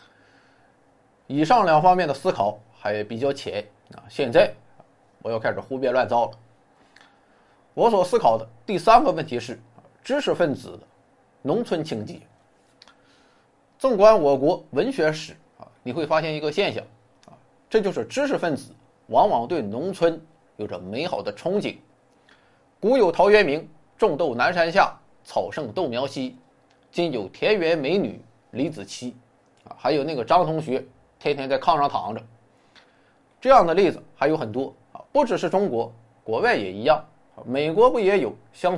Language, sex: Chinese, male